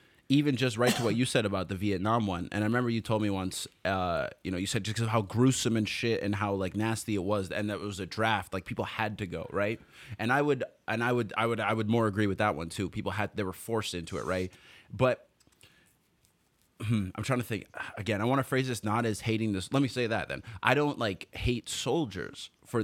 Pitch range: 100-120 Hz